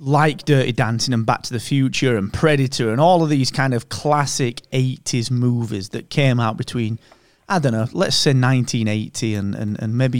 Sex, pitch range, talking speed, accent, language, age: male, 110-145 Hz, 195 wpm, British, English, 30-49